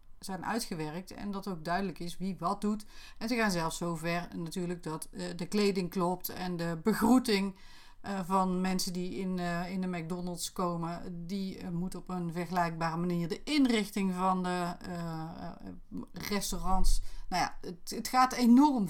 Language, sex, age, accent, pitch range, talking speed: Dutch, female, 40-59, Dutch, 170-230 Hz, 150 wpm